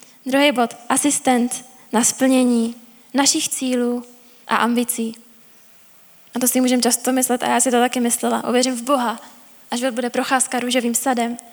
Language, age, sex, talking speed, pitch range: Czech, 10-29, female, 155 wpm, 235-255 Hz